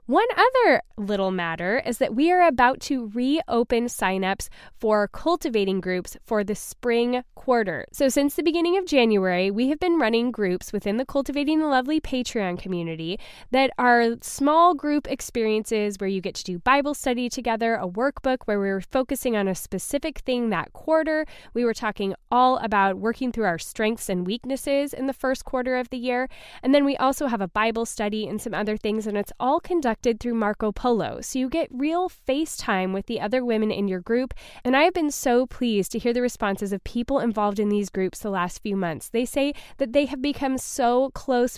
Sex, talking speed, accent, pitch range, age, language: female, 200 wpm, American, 215-270 Hz, 10-29, English